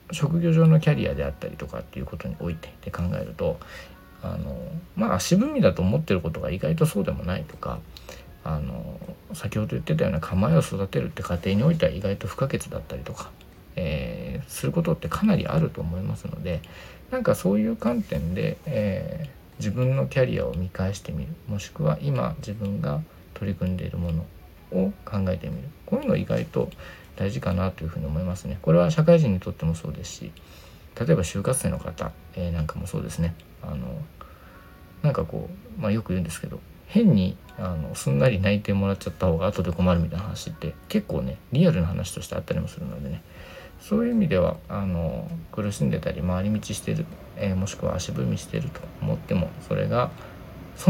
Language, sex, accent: Japanese, male, native